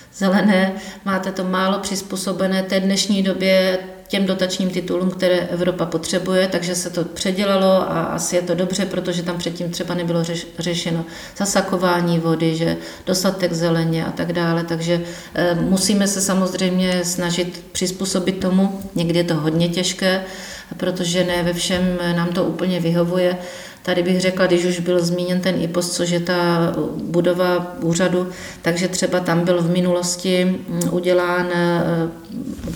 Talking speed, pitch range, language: 145 wpm, 175-185 Hz, Czech